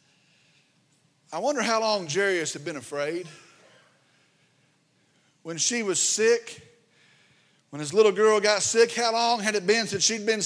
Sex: male